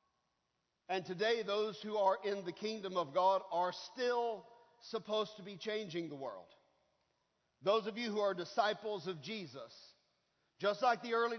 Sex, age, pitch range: male, 50-69, 165-220 Hz